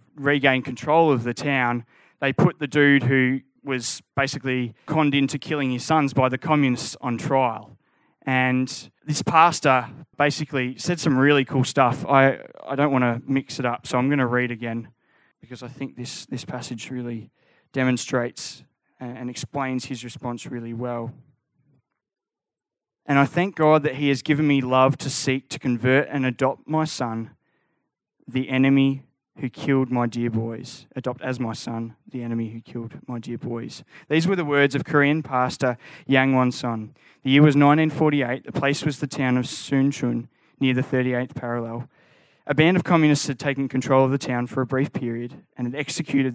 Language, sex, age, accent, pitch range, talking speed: English, male, 20-39, Australian, 125-145 Hz, 180 wpm